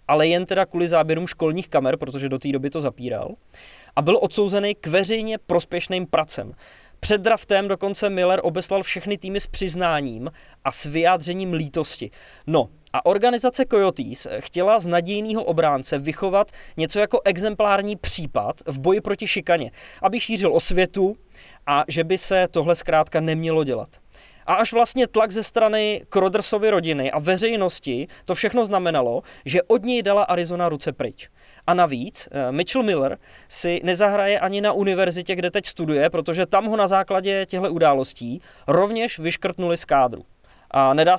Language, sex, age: English, male, 20-39